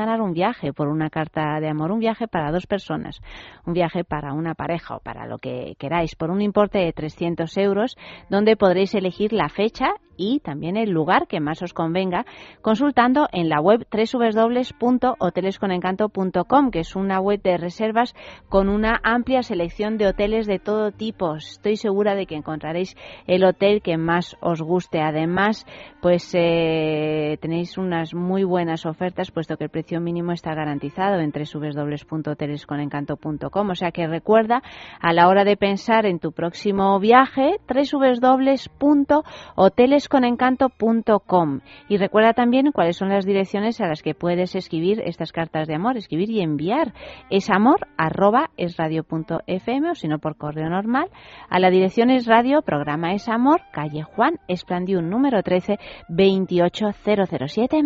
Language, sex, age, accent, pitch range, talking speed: Spanish, female, 30-49, Spanish, 165-220 Hz, 150 wpm